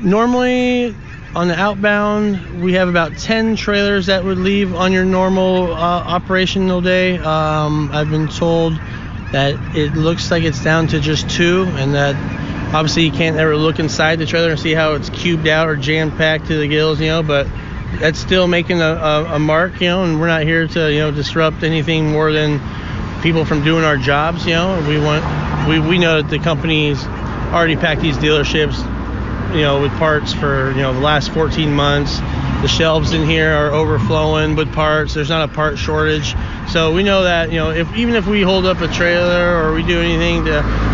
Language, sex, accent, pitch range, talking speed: English, male, American, 145-170 Hz, 205 wpm